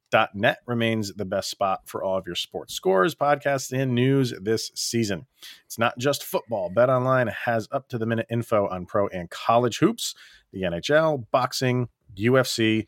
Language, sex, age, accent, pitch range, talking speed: English, male, 30-49, American, 100-125 Hz, 155 wpm